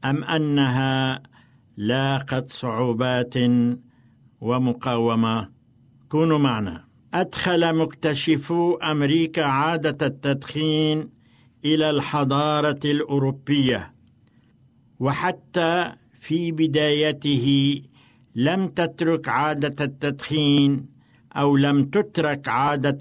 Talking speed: 70 wpm